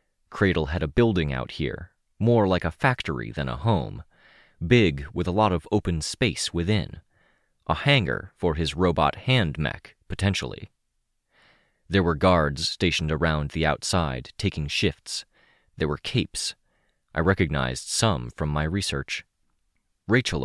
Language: English